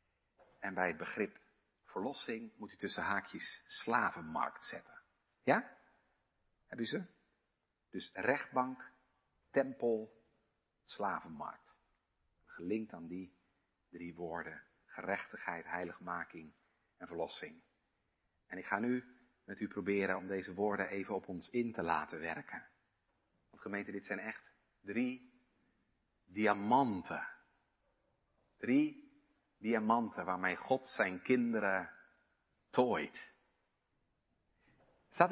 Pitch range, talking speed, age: 100-135 Hz, 100 wpm, 50-69